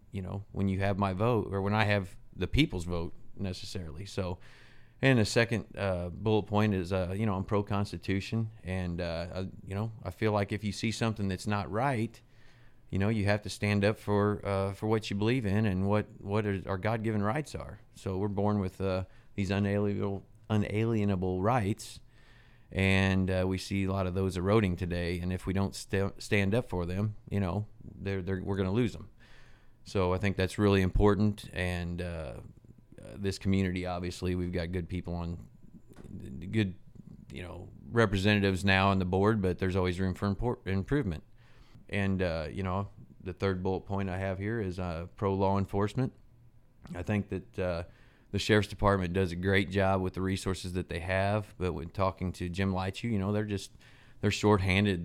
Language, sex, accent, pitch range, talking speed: English, male, American, 95-105 Hz, 195 wpm